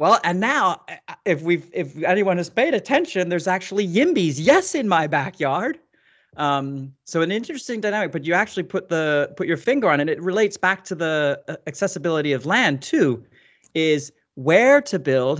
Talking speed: 180 wpm